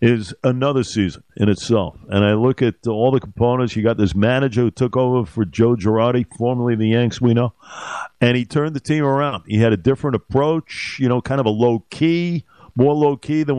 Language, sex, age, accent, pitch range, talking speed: English, male, 50-69, American, 115-140 Hz, 215 wpm